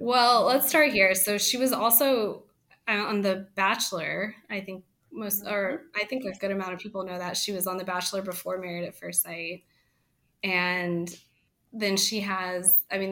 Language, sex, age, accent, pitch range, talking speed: English, female, 20-39, American, 185-215 Hz, 185 wpm